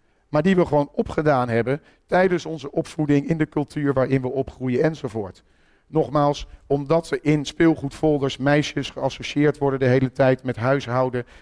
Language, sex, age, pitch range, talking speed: Dutch, male, 40-59, 130-155 Hz, 150 wpm